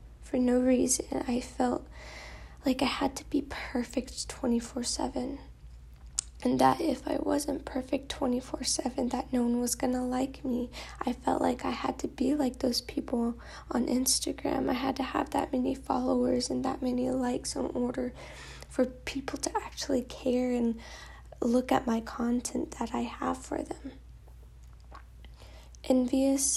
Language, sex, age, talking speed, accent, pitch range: English, female, 10-29, 150 wpm, American, 220-265 Hz